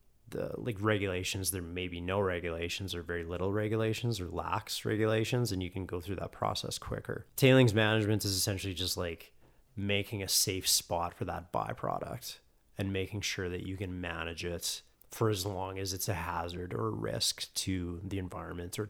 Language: English